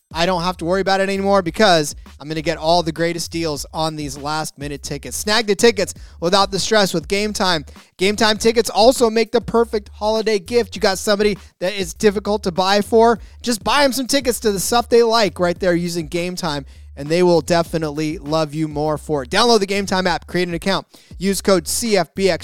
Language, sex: English, male